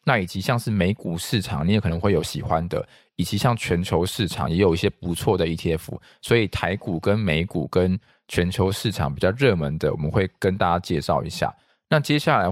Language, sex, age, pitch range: Chinese, male, 20-39, 85-110 Hz